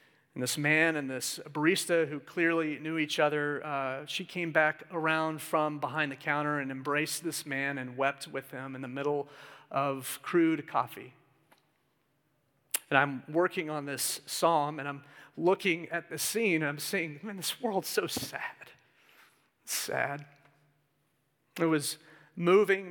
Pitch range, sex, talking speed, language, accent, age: 145-185 Hz, male, 155 wpm, English, American, 40-59